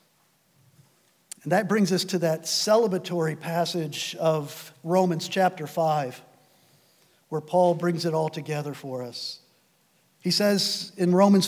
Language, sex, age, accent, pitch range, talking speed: English, male, 50-69, American, 160-215 Hz, 125 wpm